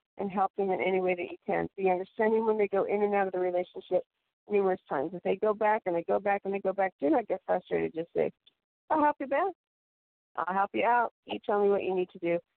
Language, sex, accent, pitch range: English, female, American, 185-245 Hz